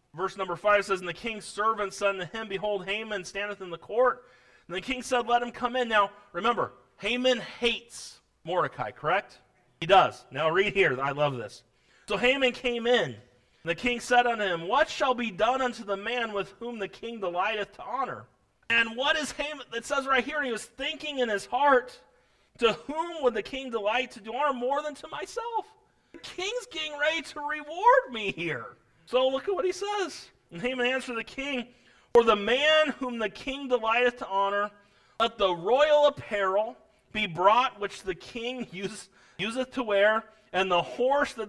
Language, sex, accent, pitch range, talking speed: English, male, American, 195-260 Hz, 195 wpm